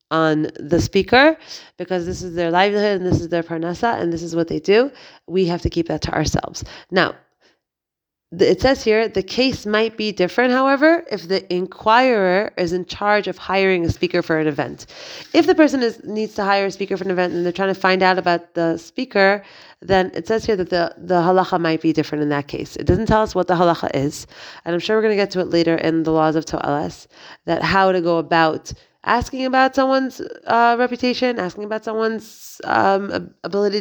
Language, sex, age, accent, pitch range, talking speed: English, female, 30-49, American, 170-215 Hz, 215 wpm